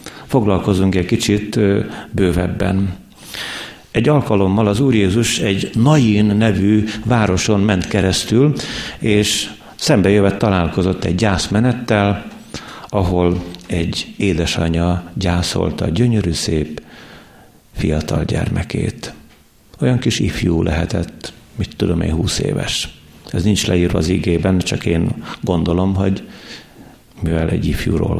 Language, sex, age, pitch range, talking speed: Hungarian, male, 50-69, 85-115 Hz, 105 wpm